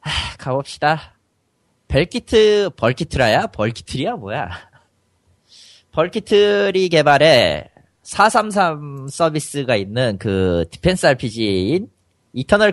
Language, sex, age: Korean, male, 30-49